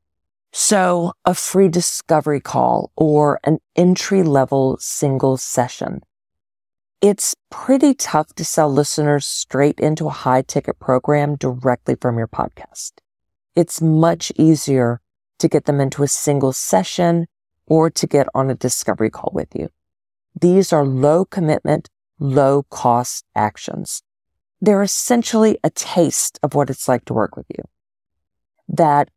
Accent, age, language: American, 40-59, English